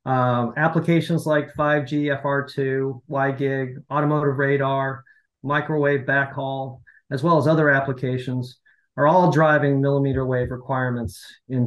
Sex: male